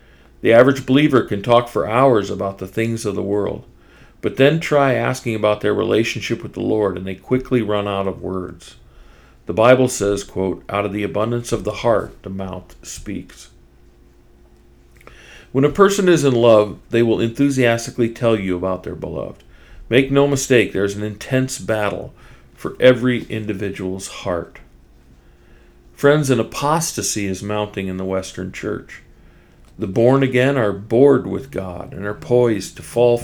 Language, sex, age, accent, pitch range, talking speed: English, male, 50-69, American, 95-125 Hz, 165 wpm